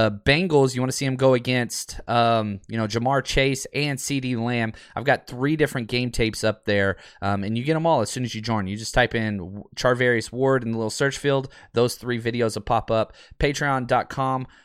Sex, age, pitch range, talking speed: male, 20-39, 115-145 Hz, 220 wpm